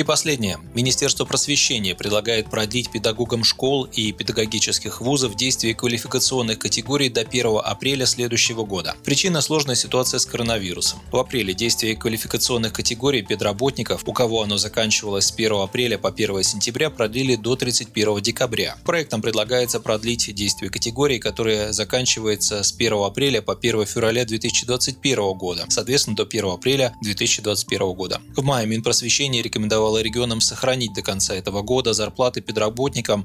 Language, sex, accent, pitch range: Russian, male, native, 105-130 Hz